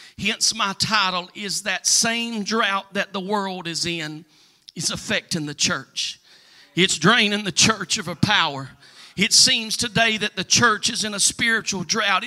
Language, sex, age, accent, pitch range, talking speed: English, male, 40-59, American, 185-225 Hz, 165 wpm